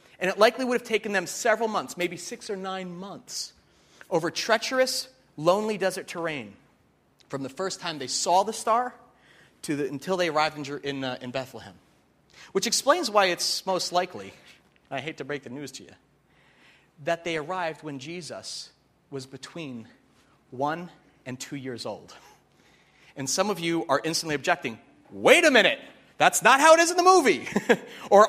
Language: English